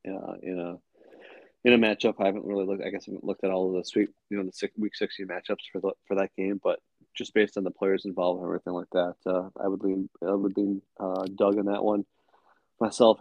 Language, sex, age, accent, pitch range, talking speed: English, male, 20-39, American, 90-100 Hz, 260 wpm